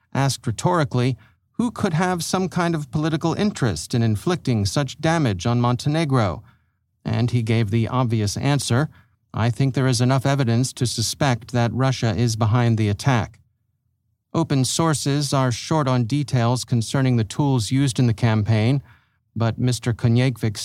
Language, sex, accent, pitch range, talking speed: English, male, American, 115-140 Hz, 150 wpm